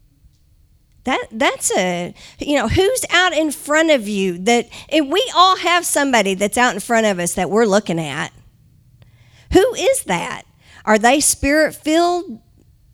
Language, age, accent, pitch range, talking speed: English, 50-69, American, 205-310 Hz, 155 wpm